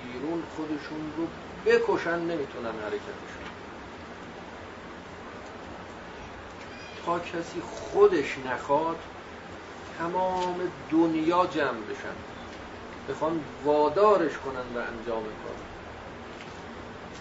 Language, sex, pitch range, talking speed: Persian, male, 120-155 Hz, 70 wpm